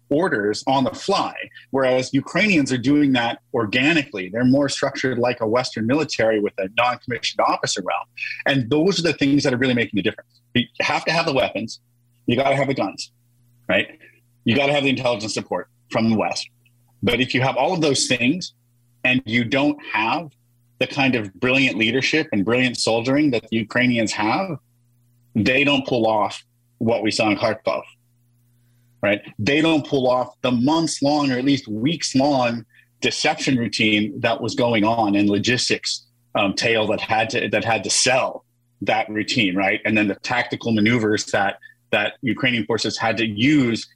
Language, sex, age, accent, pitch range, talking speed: English, male, 30-49, American, 115-130 Hz, 185 wpm